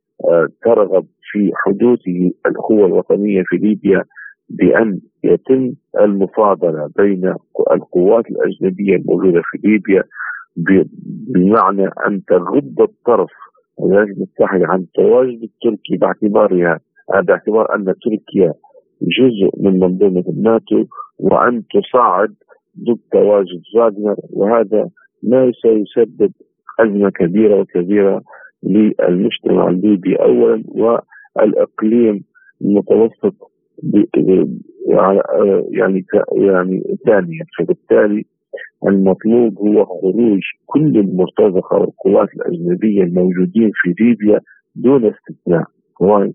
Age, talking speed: 50-69, 85 wpm